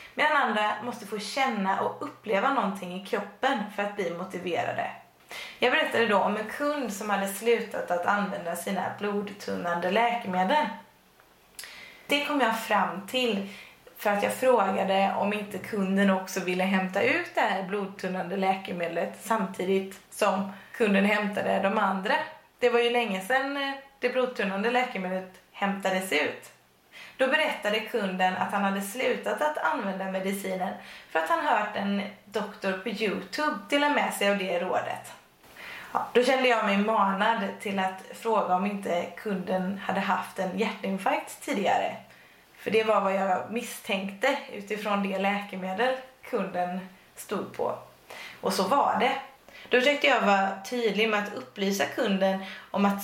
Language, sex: Swedish, female